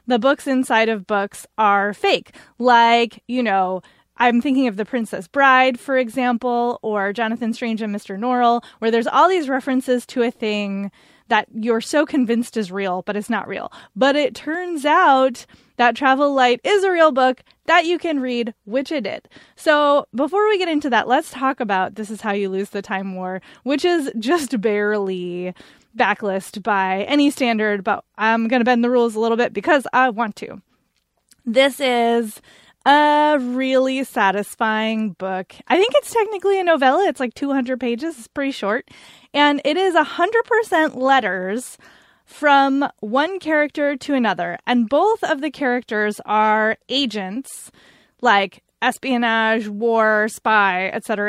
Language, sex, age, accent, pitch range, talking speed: English, female, 20-39, American, 215-280 Hz, 165 wpm